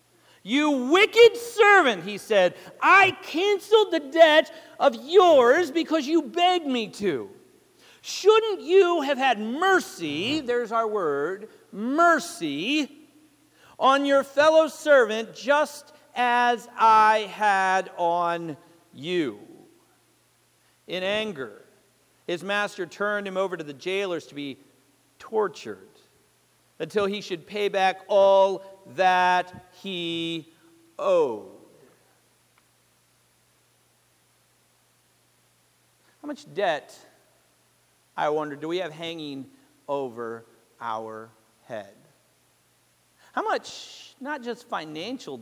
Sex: male